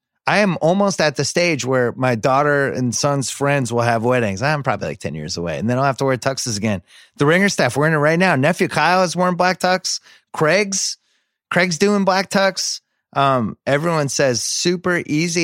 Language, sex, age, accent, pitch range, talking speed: English, male, 30-49, American, 120-155 Hz, 205 wpm